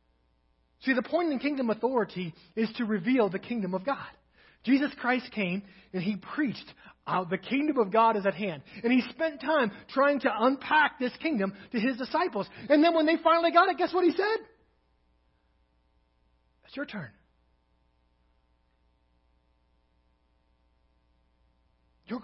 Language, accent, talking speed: English, American, 145 wpm